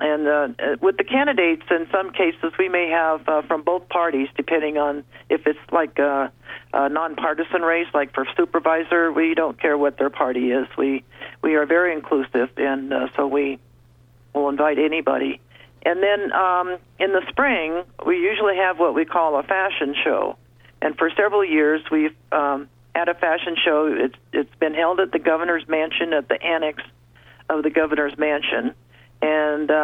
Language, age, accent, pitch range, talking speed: English, 50-69, American, 140-165 Hz, 175 wpm